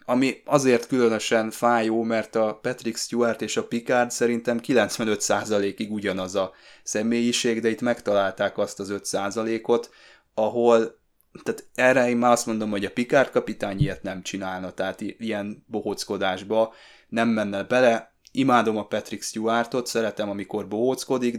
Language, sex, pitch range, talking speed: Hungarian, male, 100-120 Hz, 140 wpm